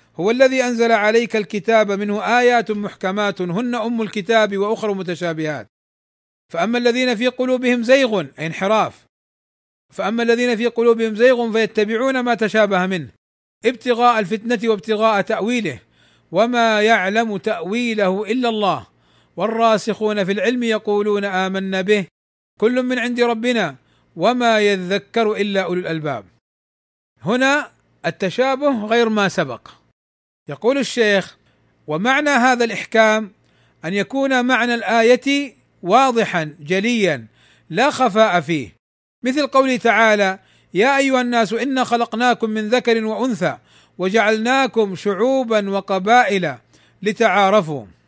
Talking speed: 105 wpm